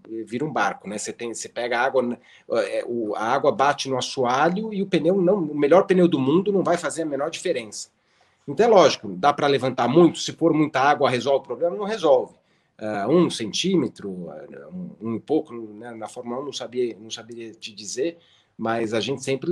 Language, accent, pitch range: Portuguese, Brazilian, 120-155 Hz